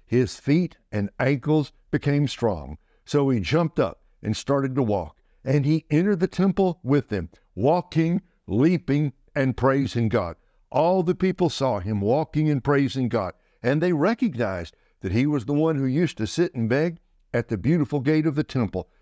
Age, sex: 60-79, male